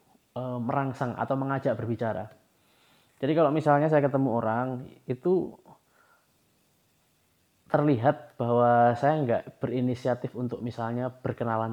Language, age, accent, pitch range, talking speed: Indonesian, 20-39, native, 115-140 Hz, 95 wpm